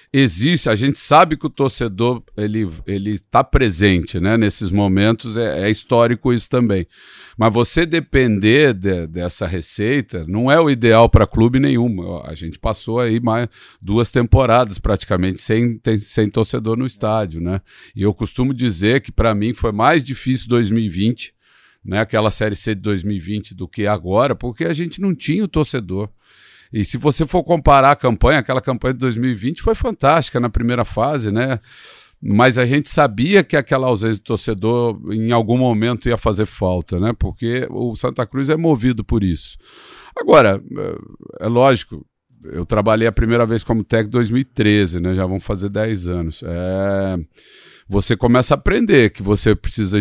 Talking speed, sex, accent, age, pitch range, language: 170 wpm, male, Brazilian, 50-69, 100-130 Hz, Portuguese